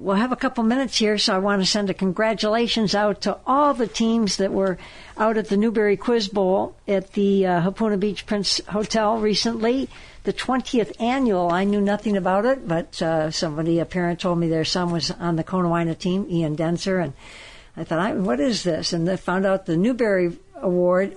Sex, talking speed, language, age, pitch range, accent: female, 205 wpm, English, 60-79, 180-210 Hz, American